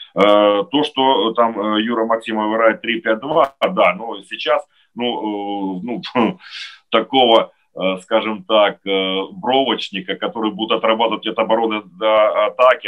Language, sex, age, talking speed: Ukrainian, male, 40-59, 125 wpm